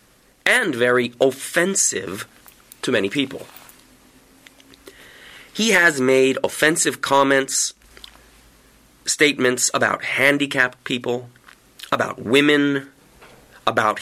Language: Japanese